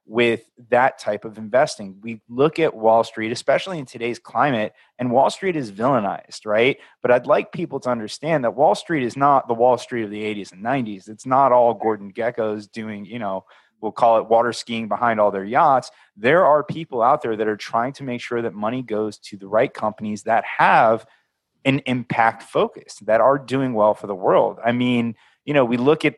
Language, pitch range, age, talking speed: English, 110-135 Hz, 30-49, 215 wpm